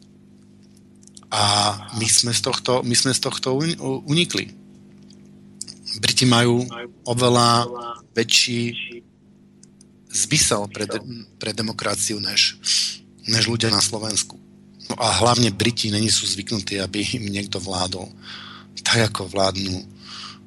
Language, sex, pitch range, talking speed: Slovak, male, 105-115 Hz, 95 wpm